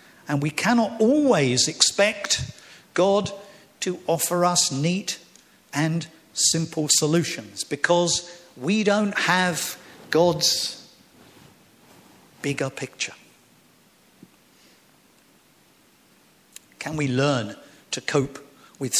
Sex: male